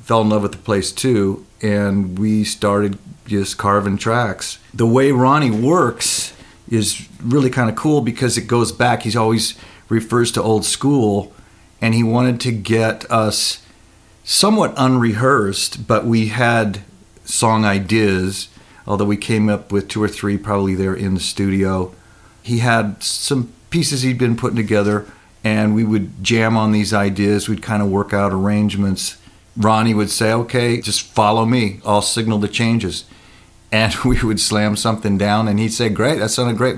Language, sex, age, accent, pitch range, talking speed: English, male, 50-69, American, 105-120 Hz, 170 wpm